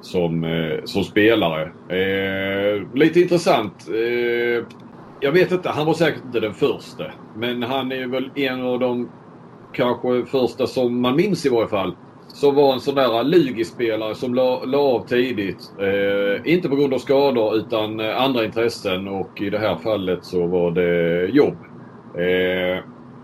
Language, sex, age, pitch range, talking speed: Swedish, male, 30-49, 95-125 Hz, 160 wpm